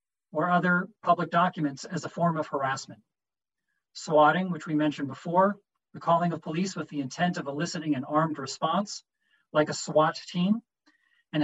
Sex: male